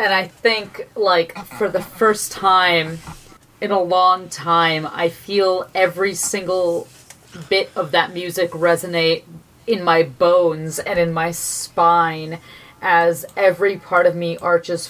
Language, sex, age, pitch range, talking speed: English, female, 30-49, 170-195 Hz, 135 wpm